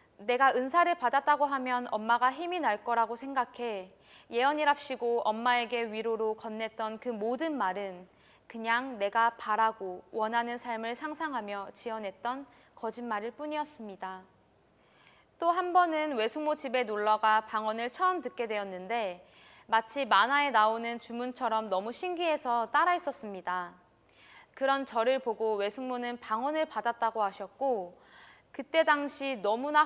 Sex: female